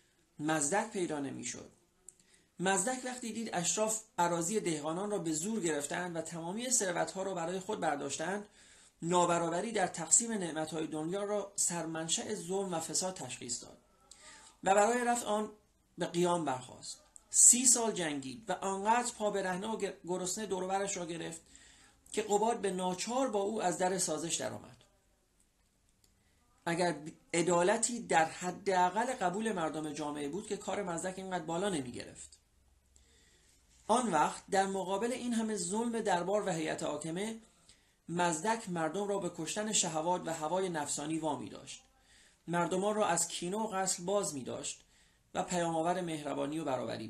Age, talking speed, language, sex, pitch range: 40-59, 145 wpm, Persian, male, 160-205 Hz